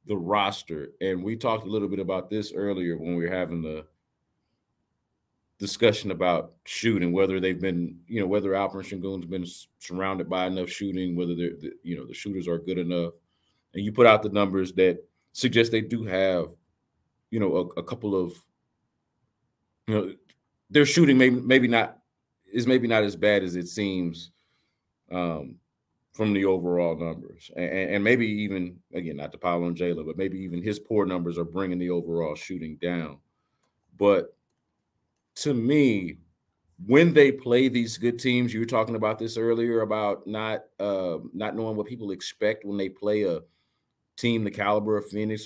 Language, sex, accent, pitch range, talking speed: English, male, American, 90-115 Hz, 175 wpm